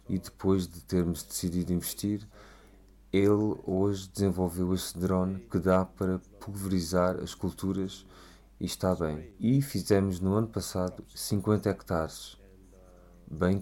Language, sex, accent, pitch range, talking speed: Portuguese, male, Portuguese, 90-100 Hz, 125 wpm